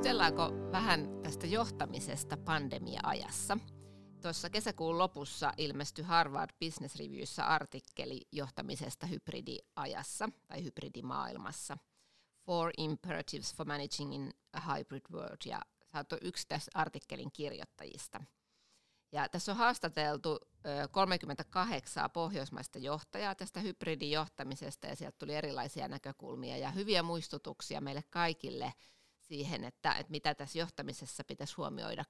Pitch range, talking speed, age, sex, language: 145-170 Hz, 110 wpm, 30-49, female, Finnish